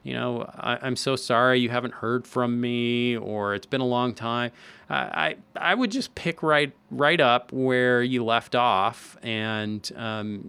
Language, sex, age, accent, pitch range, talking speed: English, male, 30-49, American, 110-145 Hz, 185 wpm